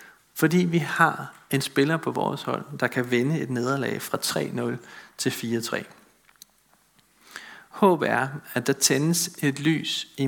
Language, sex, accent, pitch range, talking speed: Danish, male, native, 130-160 Hz, 145 wpm